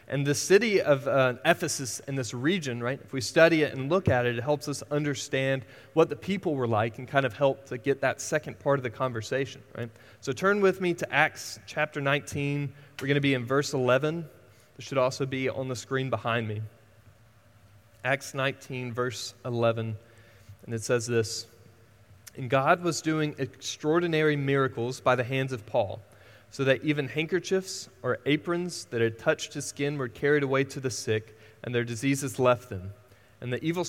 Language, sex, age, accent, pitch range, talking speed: English, male, 30-49, American, 115-145 Hz, 190 wpm